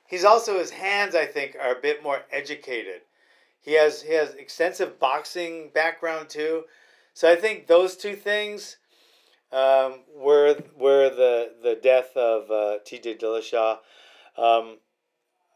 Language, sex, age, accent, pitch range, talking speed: English, male, 40-59, American, 135-195 Hz, 145 wpm